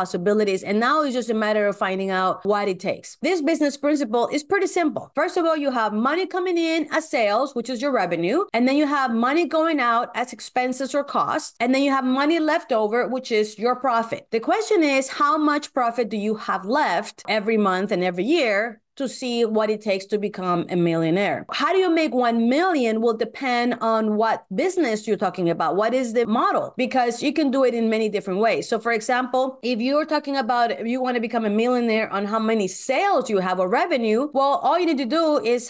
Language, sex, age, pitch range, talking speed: English, female, 30-49, 210-280 Hz, 225 wpm